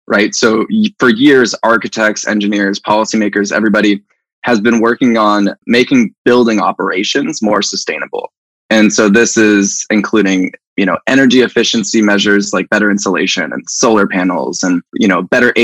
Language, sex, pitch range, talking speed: English, male, 100-115 Hz, 140 wpm